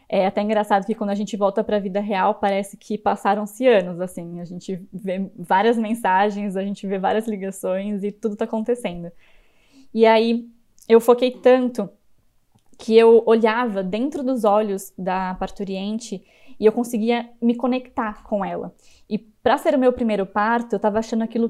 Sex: female